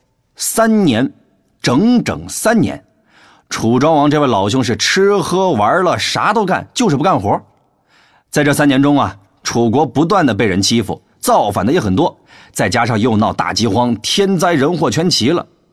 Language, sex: Chinese, male